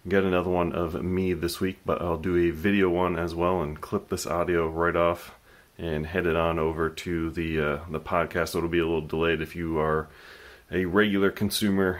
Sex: male